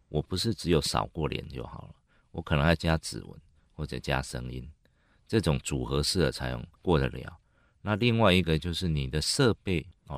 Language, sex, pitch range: Chinese, male, 70-90 Hz